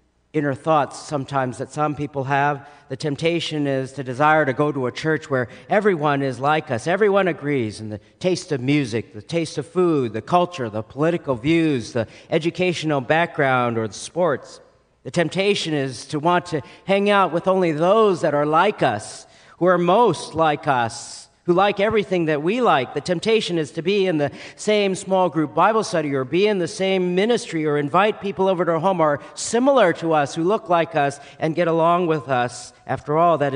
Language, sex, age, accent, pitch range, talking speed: English, male, 50-69, American, 130-170 Hz, 200 wpm